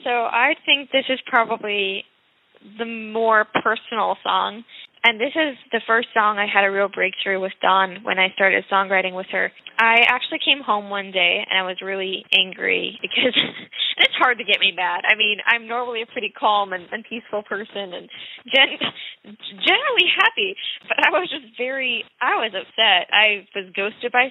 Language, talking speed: English, 180 wpm